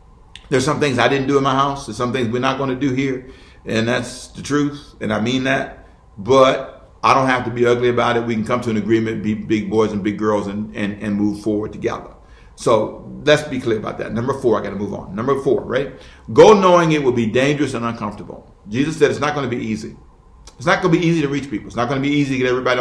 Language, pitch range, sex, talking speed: English, 120-165 Hz, male, 270 wpm